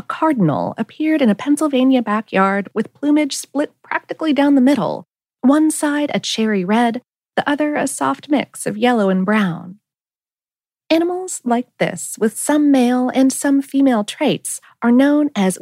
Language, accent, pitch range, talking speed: English, American, 185-285 Hz, 160 wpm